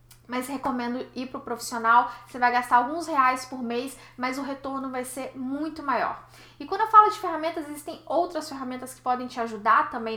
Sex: female